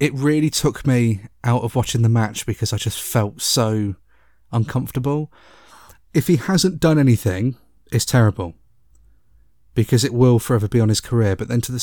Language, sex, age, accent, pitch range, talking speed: English, male, 30-49, British, 105-135 Hz, 170 wpm